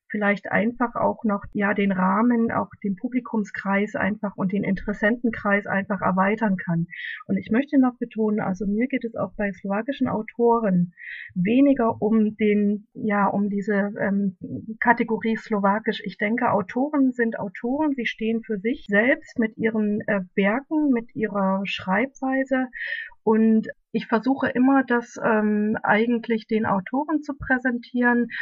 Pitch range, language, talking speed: 200-240 Hz, Slovak, 140 wpm